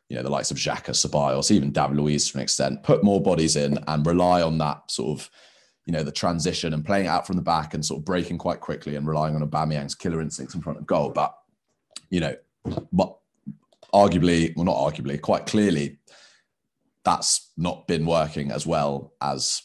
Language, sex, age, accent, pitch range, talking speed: English, male, 20-39, British, 75-85 Hz, 210 wpm